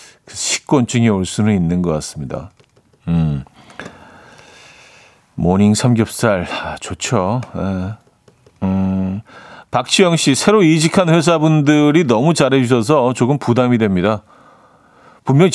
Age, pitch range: 50-69, 110-155 Hz